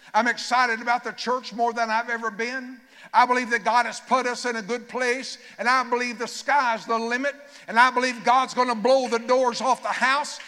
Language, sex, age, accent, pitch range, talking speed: English, male, 60-79, American, 225-290 Hz, 225 wpm